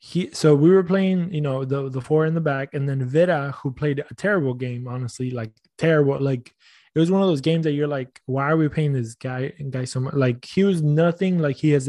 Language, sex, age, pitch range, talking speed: English, male, 20-39, 135-165 Hz, 250 wpm